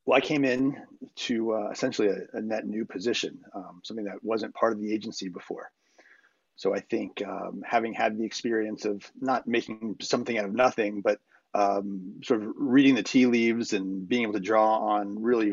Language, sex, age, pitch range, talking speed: English, male, 30-49, 100-120 Hz, 195 wpm